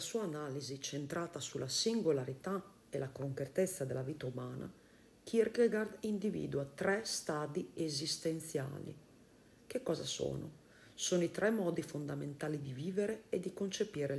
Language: Italian